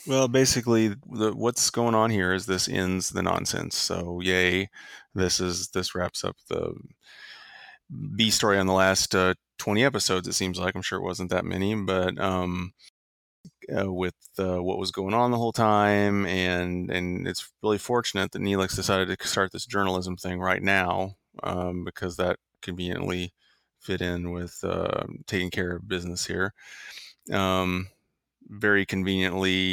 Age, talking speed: 30-49, 160 wpm